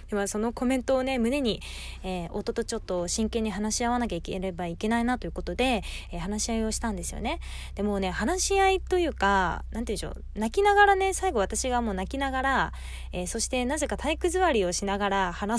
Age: 20-39